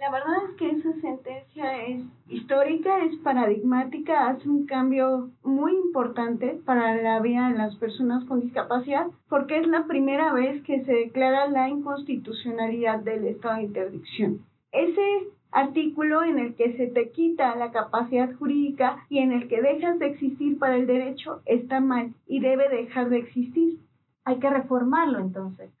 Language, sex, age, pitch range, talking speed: Spanish, female, 30-49, 250-310 Hz, 160 wpm